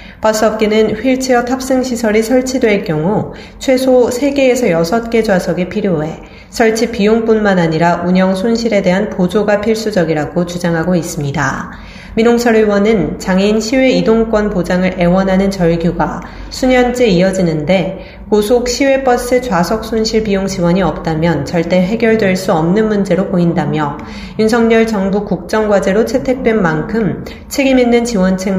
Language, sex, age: Korean, female, 30-49